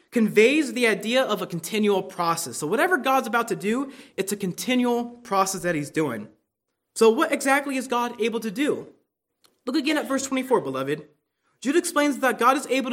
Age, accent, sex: 20-39, American, male